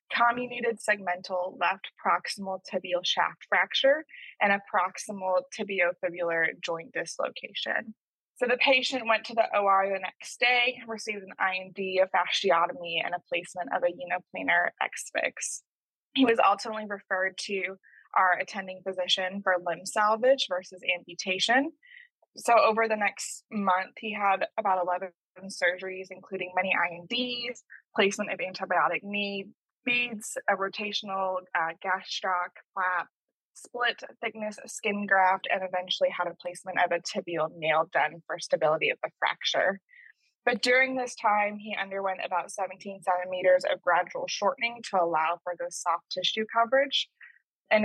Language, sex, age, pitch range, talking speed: English, female, 20-39, 180-220 Hz, 140 wpm